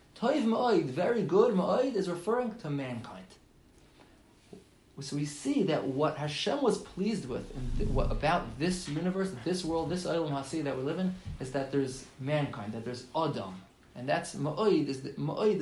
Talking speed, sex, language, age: 170 wpm, male, English, 30-49